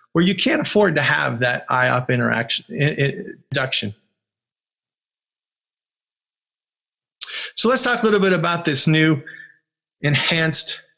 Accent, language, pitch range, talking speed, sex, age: American, English, 140-185 Hz, 105 wpm, male, 40-59